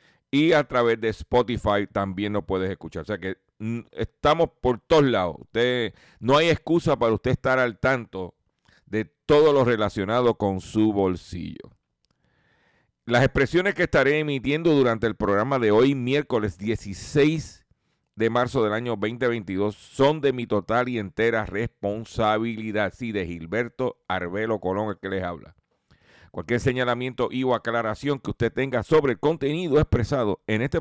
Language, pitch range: Spanish, 100-130 Hz